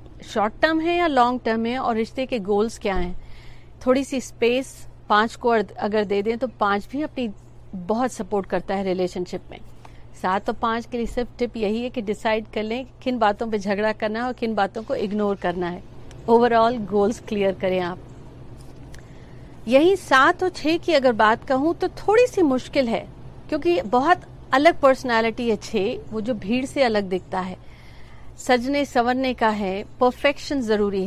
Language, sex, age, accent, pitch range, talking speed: Hindi, female, 50-69, native, 205-260 Hz, 180 wpm